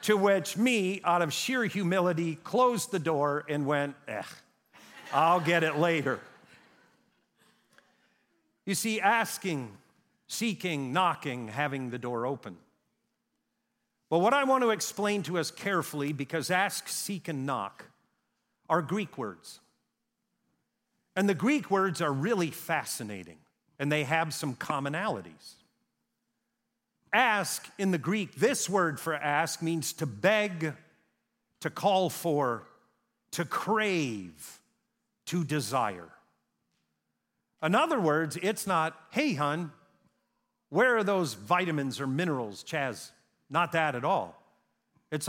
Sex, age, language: male, 50-69, English